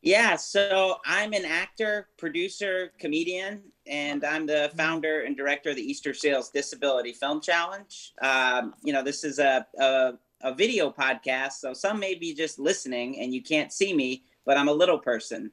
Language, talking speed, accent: English, 175 wpm, American